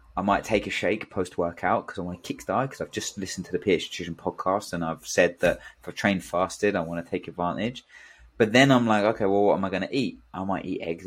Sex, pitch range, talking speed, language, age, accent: male, 85-105 Hz, 275 wpm, English, 20-39, British